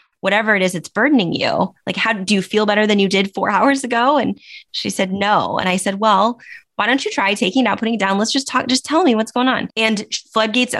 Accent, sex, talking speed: American, female, 260 wpm